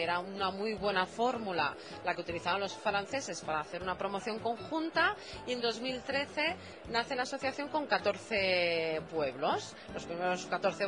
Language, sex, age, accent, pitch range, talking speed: Spanish, female, 30-49, Spanish, 195-295 Hz, 150 wpm